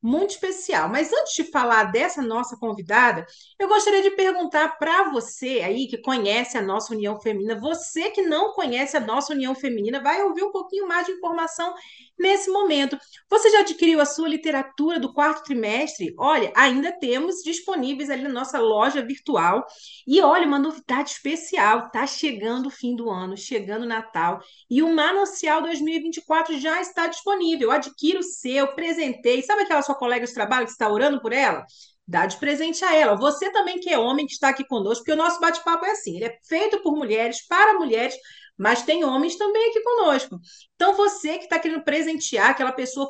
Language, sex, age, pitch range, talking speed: Portuguese, female, 40-59, 250-335 Hz, 190 wpm